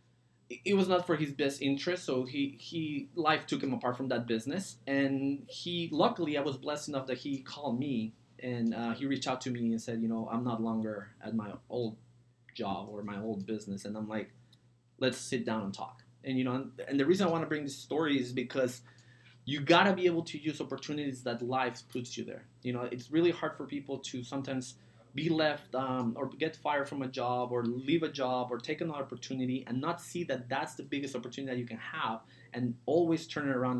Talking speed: 225 wpm